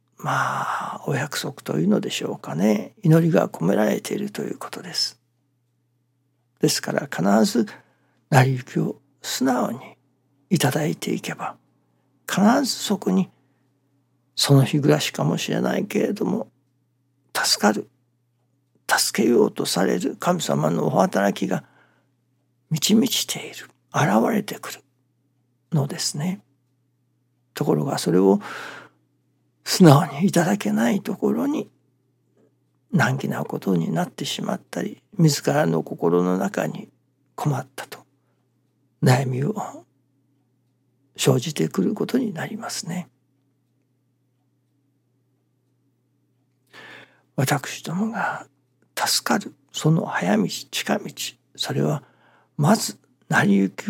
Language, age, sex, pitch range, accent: Japanese, 60-79, male, 125-155 Hz, native